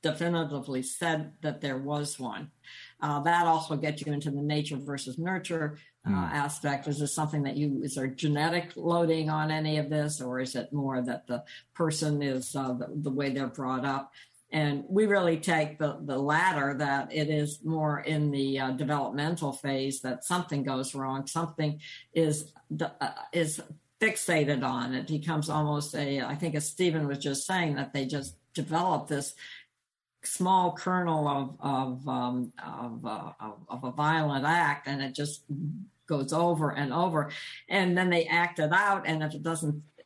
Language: English